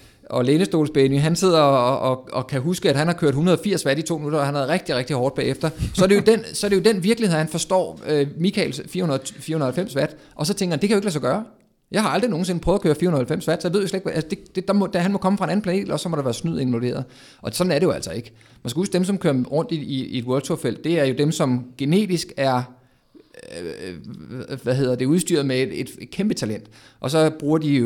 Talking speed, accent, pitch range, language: 275 wpm, native, 125-170 Hz, Danish